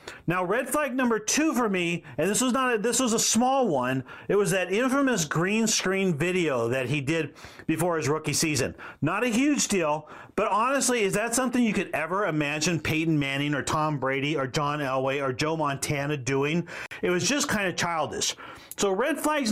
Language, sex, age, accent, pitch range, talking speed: English, male, 40-59, American, 150-220 Hz, 200 wpm